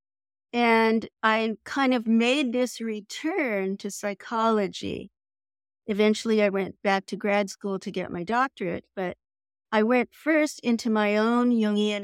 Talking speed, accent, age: 140 wpm, American, 50-69